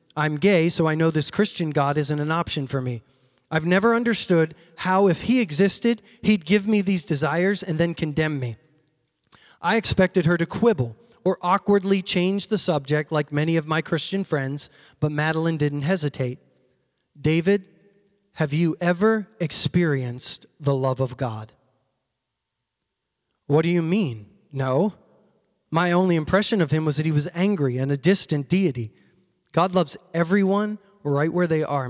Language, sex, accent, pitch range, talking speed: English, male, American, 145-185 Hz, 160 wpm